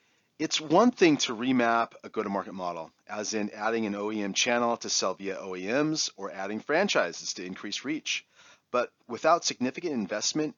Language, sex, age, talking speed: English, male, 30-49, 160 wpm